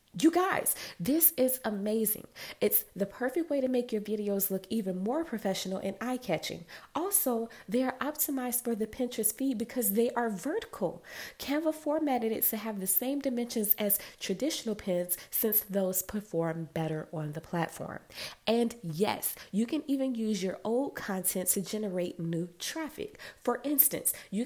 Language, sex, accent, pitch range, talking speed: English, female, American, 195-270 Hz, 160 wpm